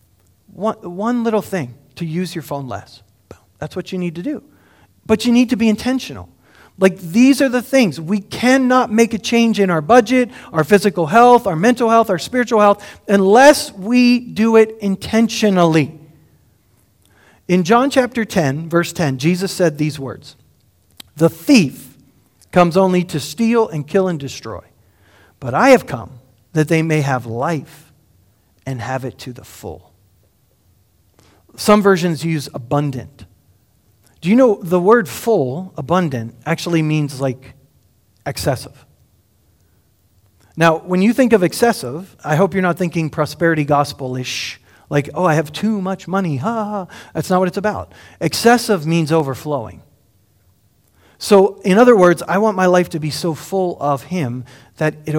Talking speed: 155 wpm